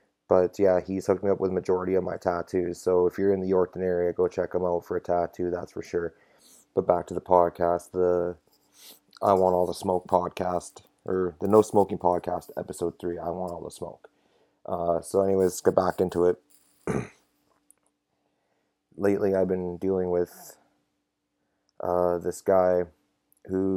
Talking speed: 175 wpm